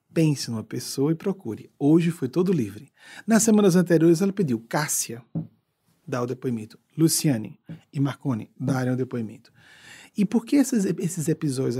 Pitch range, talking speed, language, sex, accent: 130-190 Hz, 150 wpm, Portuguese, male, Brazilian